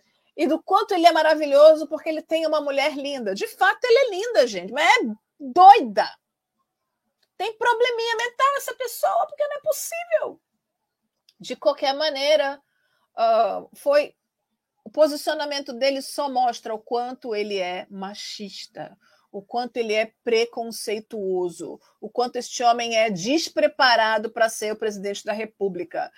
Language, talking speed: Portuguese, 140 wpm